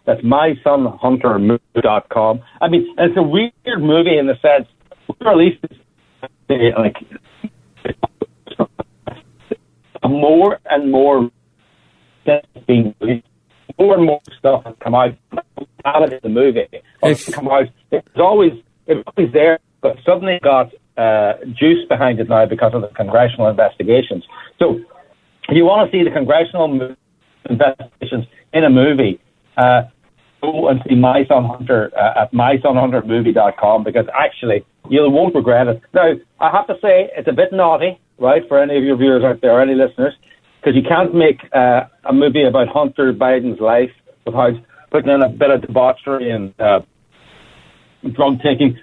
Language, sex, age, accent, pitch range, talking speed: English, male, 60-79, American, 125-160 Hz, 140 wpm